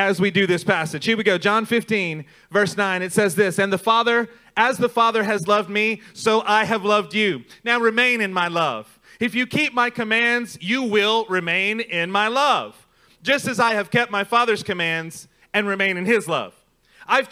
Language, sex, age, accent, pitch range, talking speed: English, male, 30-49, American, 195-240 Hz, 205 wpm